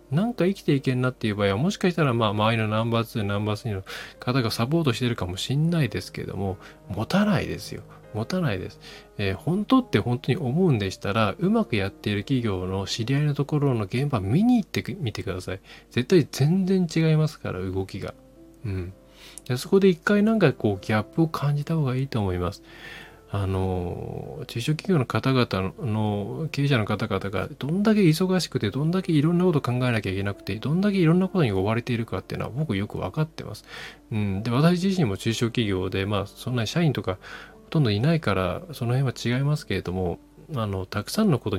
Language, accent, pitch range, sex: Japanese, native, 100-155 Hz, male